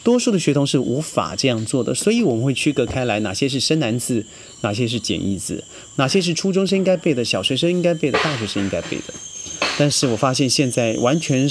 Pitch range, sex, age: 110-155 Hz, male, 30-49